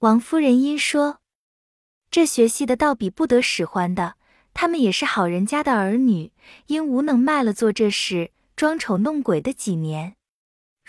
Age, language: 20-39, Chinese